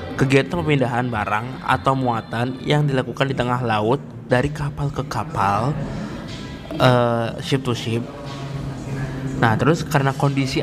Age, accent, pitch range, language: 20-39, native, 125-145 Hz, Indonesian